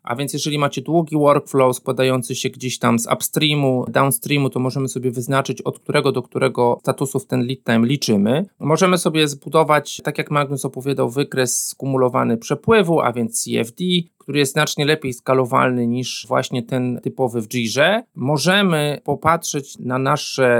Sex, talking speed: male, 160 wpm